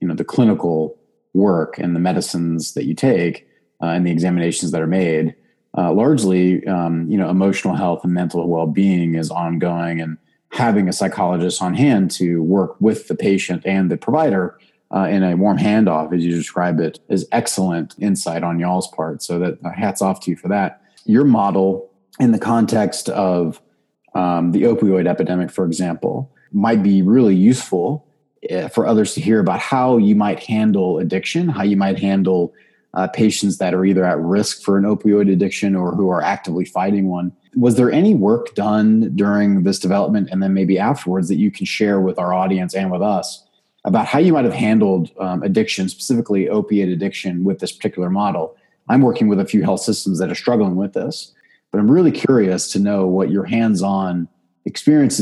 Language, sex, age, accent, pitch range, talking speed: English, male, 30-49, American, 90-100 Hz, 190 wpm